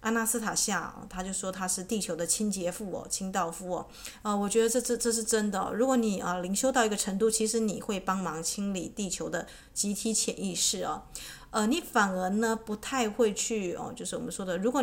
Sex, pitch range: female, 185-230 Hz